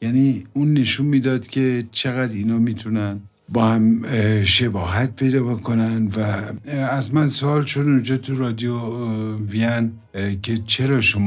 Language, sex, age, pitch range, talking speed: Persian, male, 60-79, 100-120 Hz, 135 wpm